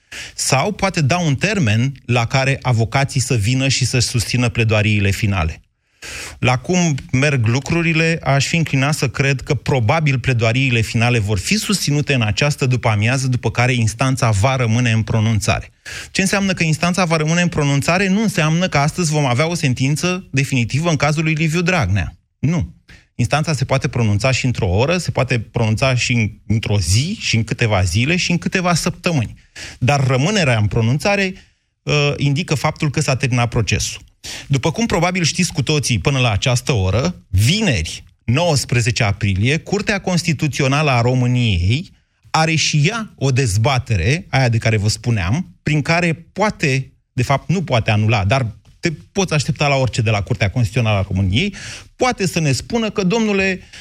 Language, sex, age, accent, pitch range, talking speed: Romanian, male, 30-49, native, 115-160 Hz, 165 wpm